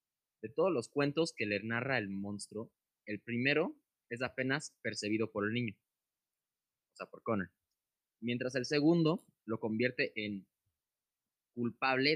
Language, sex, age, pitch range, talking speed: Spanish, male, 20-39, 105-130 Hz, 140 wpm